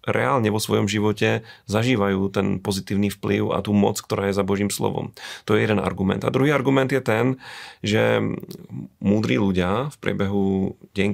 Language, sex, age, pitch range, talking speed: Slovak, male, 30-49, 100-110 Hz, 165 wpm